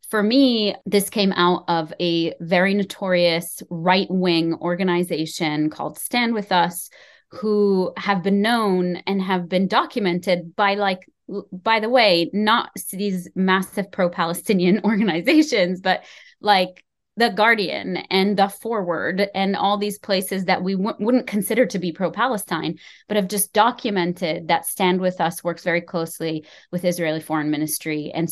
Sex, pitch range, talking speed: female, 175-210 Hz, 145 wpm